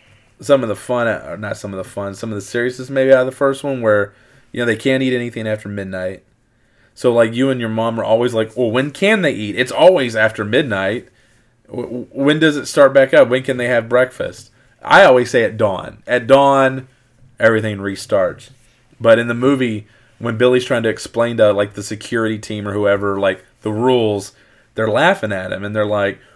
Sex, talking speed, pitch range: male, 210 wpm, 105-125 Hz